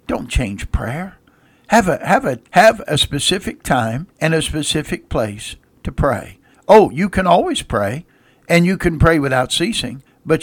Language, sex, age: English, male, 60-79